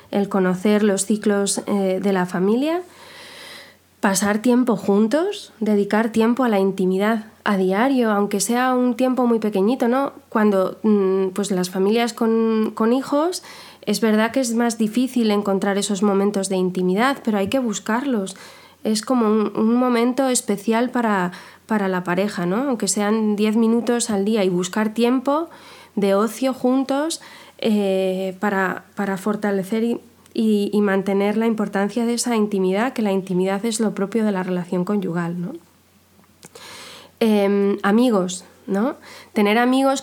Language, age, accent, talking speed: Spanish, 20-39, Spanish, 145 wpm